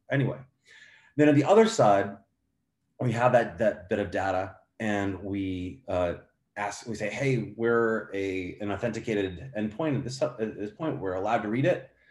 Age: 30-49